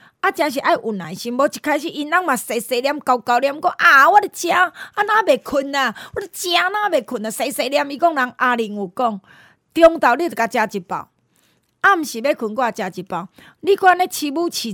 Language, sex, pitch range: Chinese, female, 225-335 Hz